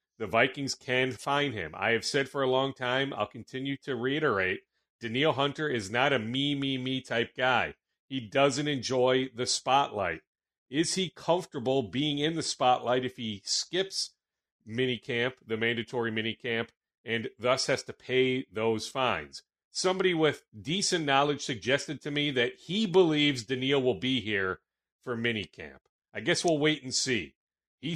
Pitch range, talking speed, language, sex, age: 115-145 Hz, 160 wpm, English, male, 40-59